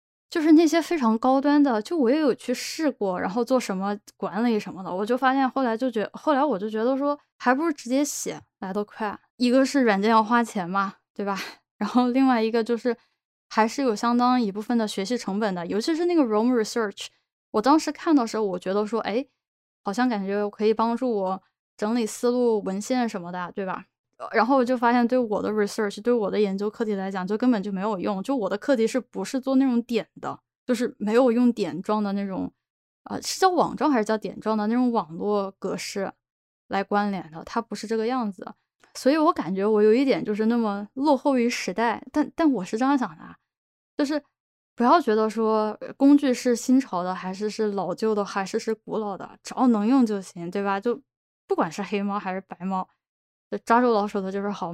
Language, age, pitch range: Chinese, 10-29, 205-260 Hz